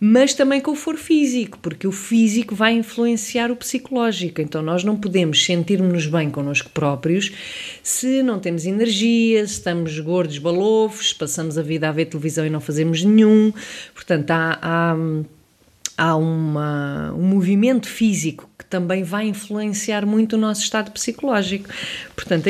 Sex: female